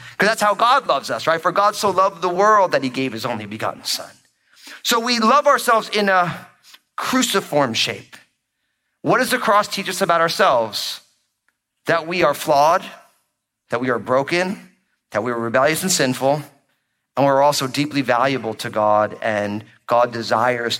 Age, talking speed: 40-59, 175 wpm